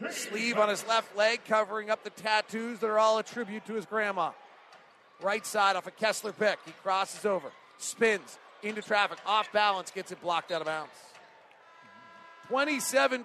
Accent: American